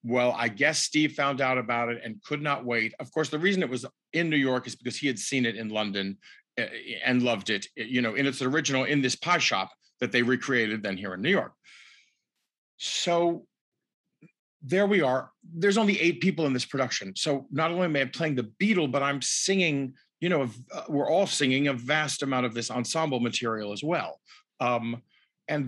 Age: 50-69